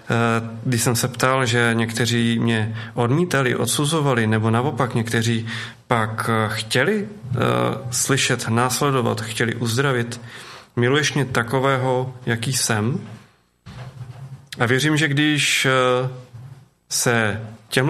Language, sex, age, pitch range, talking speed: Czech, male, 30-49, 115-130 Hz, 90 wpm